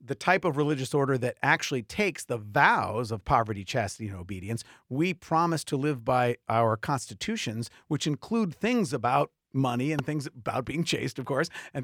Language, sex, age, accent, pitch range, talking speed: English, male, 50-69, American, 130-170 Hz, 175 wpm